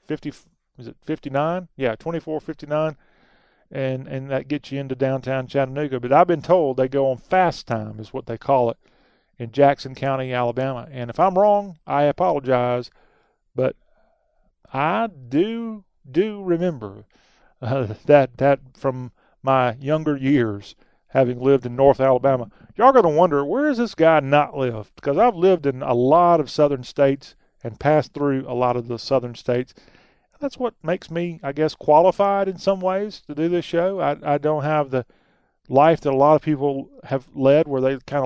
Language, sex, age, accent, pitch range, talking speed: English, male, 40-59, American, 130-165 Hz, 180 wpm